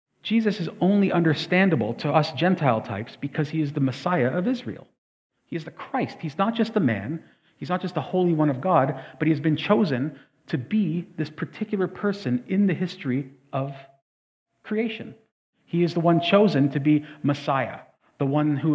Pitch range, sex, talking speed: 130-180 Hz, male, 185 wpm